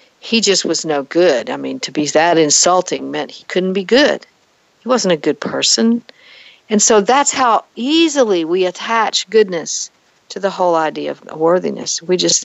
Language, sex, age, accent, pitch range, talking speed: English, female, 60-79, American, 170-225 Hz, 180 wpm